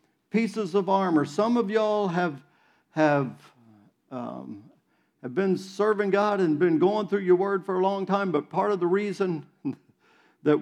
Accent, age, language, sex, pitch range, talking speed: American, 50-69, English, male, 160-215 Hz, 165 wpm